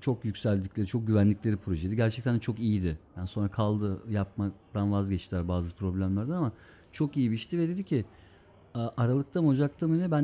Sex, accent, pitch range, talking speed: male, native, 95-135 Hz, 170 wpm